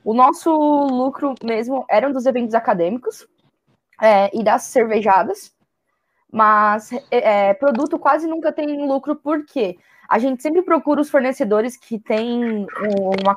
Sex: female